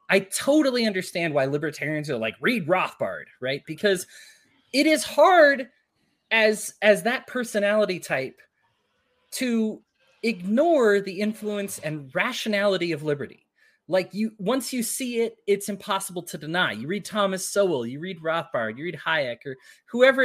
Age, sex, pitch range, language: 20-39, male, 165-230 Hz, English